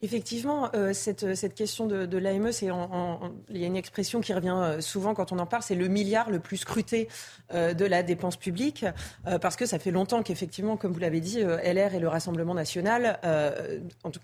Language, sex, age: French, female, 30-49